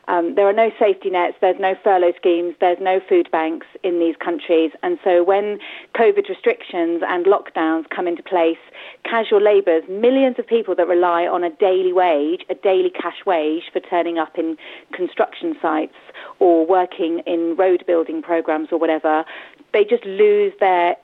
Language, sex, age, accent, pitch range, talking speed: English, female, 40-59, British, 175-290 Hz, 170 wpm